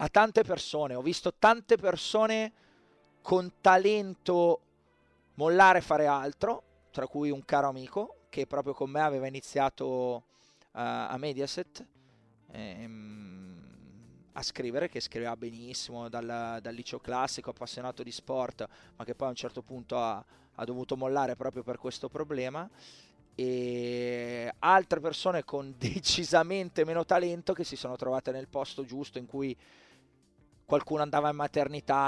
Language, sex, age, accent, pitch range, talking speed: Italian, male, 30-49, native, 115-150 Hz, 140 wpm